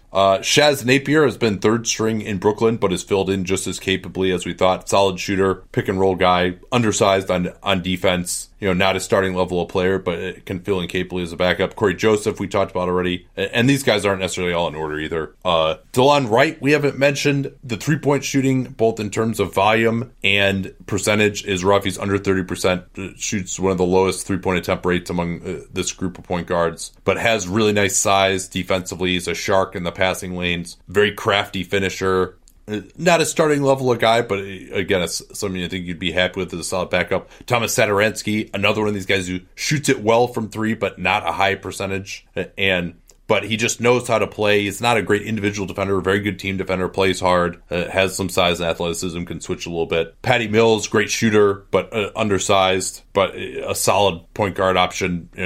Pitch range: 90-110 Hz